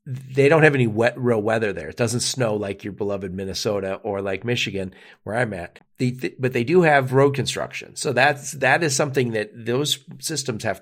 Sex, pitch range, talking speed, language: male, 105-135 Hz, 215 wpm, English